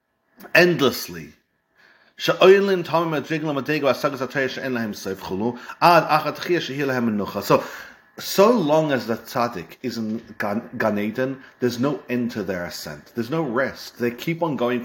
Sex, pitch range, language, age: male, 120-155 Hz, English, 40-59